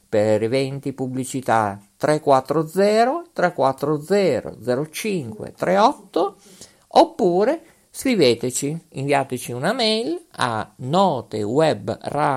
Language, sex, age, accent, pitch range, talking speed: Italian, male, 50-69, native, 125-200 Hz, 60 wpm